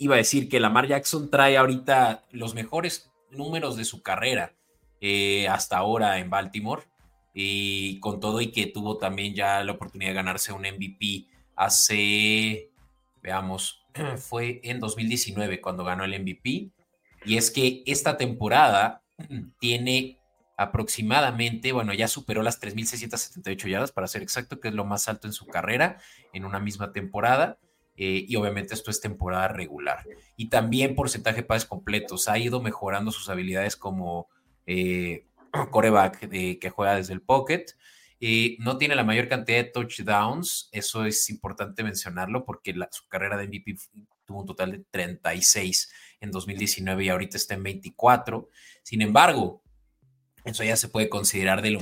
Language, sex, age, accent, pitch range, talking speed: Spanish, male, 20-39, Mexican, 95-120 Hz, 155 wpm